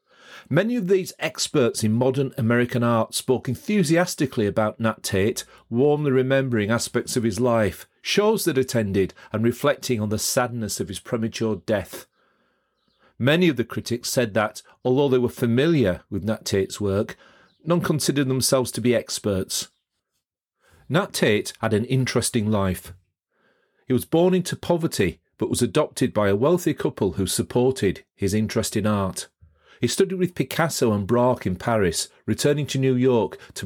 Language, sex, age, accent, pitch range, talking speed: English, male, 40-59, British, 100-130 Hz, 155 wpm